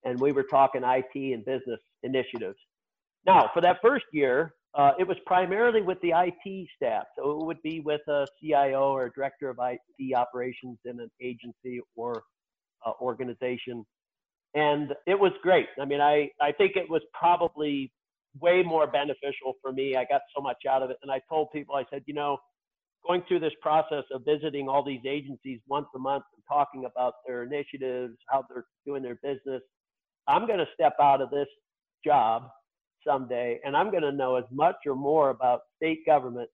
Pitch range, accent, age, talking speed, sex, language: 130-160 Hz, American, 50-69, 185 wpm, male, English